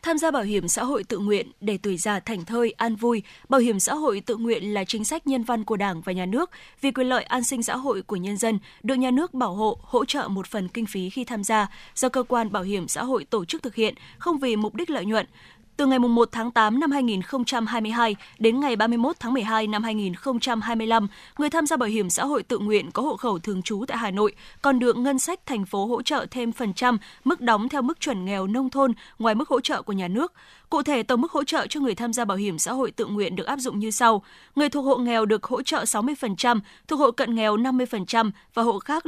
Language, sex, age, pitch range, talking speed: Vietnamese, female, 10-29, 210-265 Hz, 255 wpm